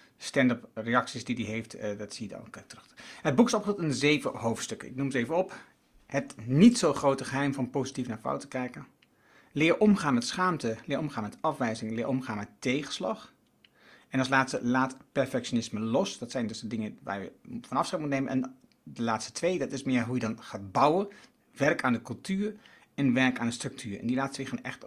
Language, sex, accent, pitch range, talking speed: Dutch, male, Dutch, 120-160 Hz, 220 wpm